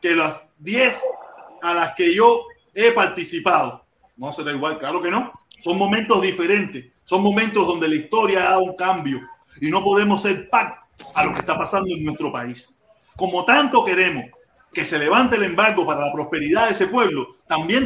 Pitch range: 180-280 Hz